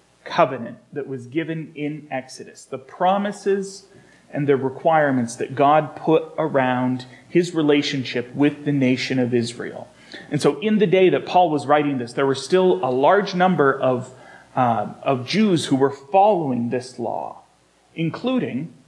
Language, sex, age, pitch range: English, male, 30-49, 130-165 Hz